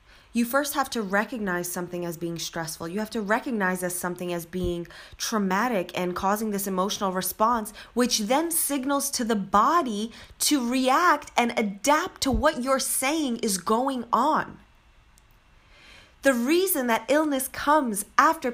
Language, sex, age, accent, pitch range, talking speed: English, female, 20-39, American, 210-295 Hz, 145 wpm